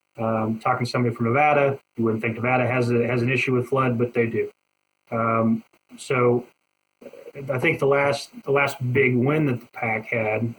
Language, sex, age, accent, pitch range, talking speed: English, male, 30-49, American, 115-130 Hz, 195 wpm